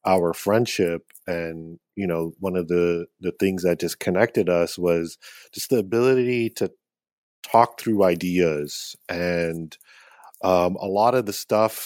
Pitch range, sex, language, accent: 90-105 Hz, male, English, American